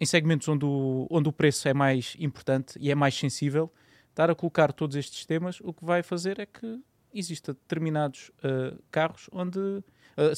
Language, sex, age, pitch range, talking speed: Portuguese, male, 20-39, 130-165 Hz, 185 wpm